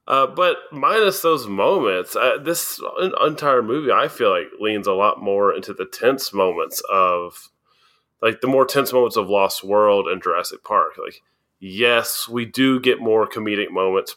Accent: American